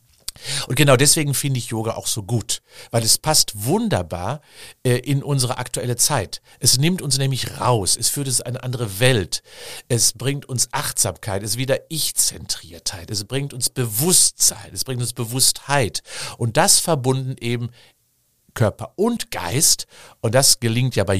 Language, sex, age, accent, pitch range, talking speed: German, male, 50-69, German, 105-135 Hz, 165 wpm